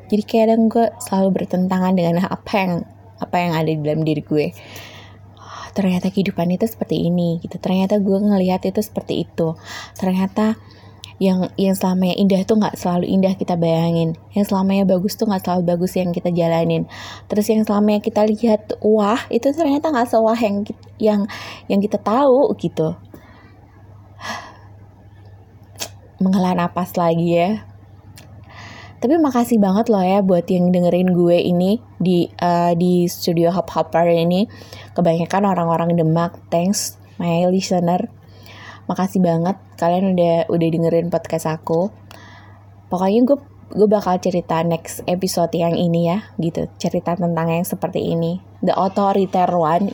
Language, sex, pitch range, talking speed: Indonesian, female, 160-195 Hz, 145 wpm